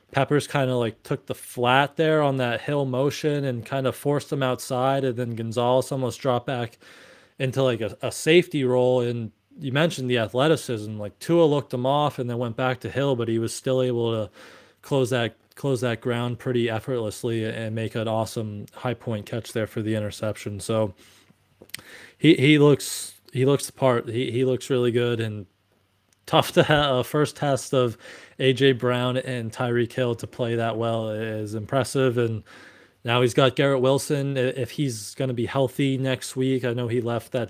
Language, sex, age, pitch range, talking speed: English, male, 20-39, 115-135 Hz, 195 wpm